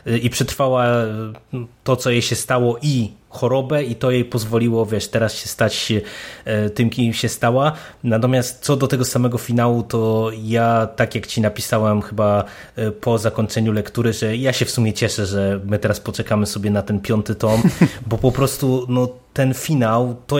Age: 20-39